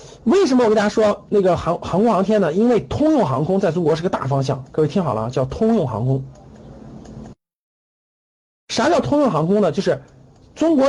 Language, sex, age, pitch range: Chinese, male, 50-69, 140-225 Hz